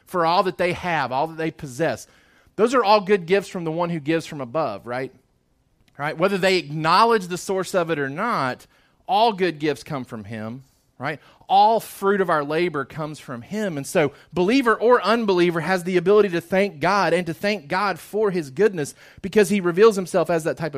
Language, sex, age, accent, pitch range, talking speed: English, male, 30-49, American, 145-195 Hz, 210 wpm